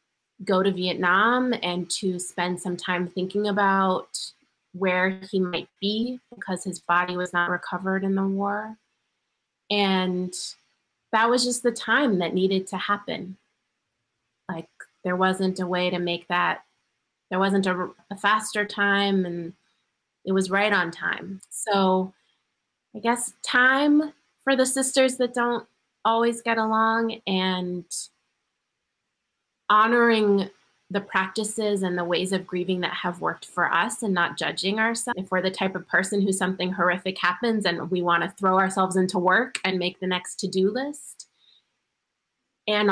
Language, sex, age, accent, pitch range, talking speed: English, female, 30-49, American, 180-210 Hz, 150 wpm